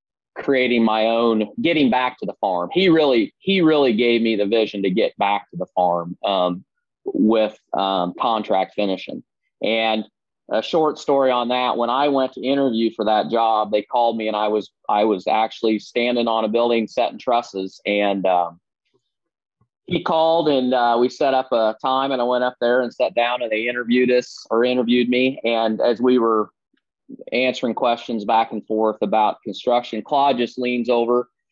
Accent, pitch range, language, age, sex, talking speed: American, 115-140 Hz, English, 30-49, male, 185 wpm